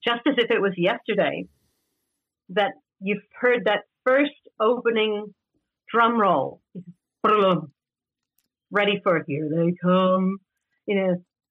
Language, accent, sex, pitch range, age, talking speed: English, American, female, 185-220 Hz, 50-69, 115 wpm